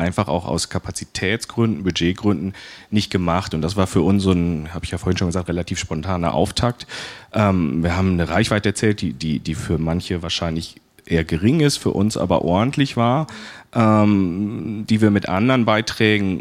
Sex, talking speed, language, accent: male, 180 wpm, German, German